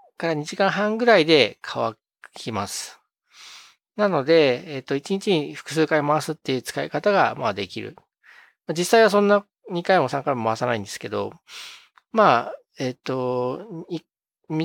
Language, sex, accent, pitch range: Japanese, male, native, 125-195 Hz